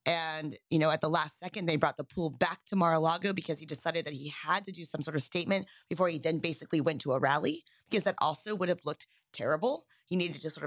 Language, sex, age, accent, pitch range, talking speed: English, female, 20-39, American, 160-200 Hz, 255 wpm